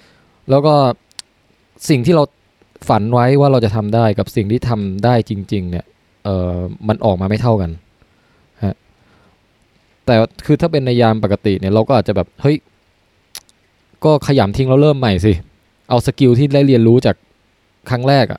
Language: Thai